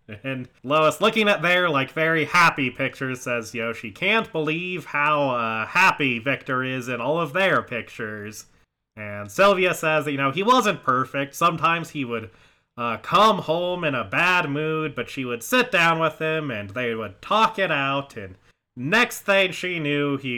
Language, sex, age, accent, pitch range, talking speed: English, male, 30-49, American, 120-170 Hz, 185 wpm